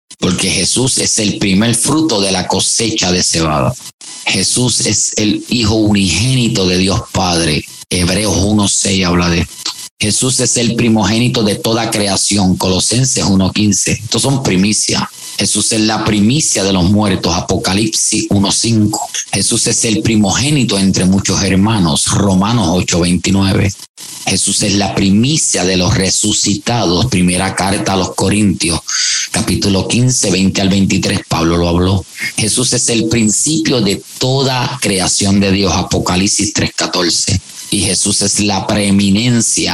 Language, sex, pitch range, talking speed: English, male, 95-110 Hz, 135 wpm